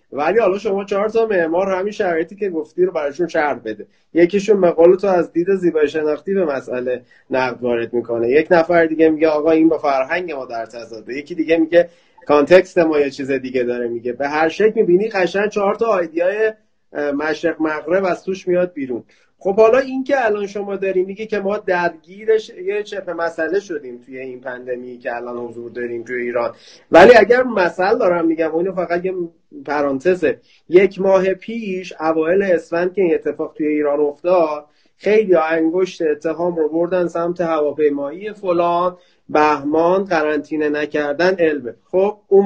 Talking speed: 160 wpm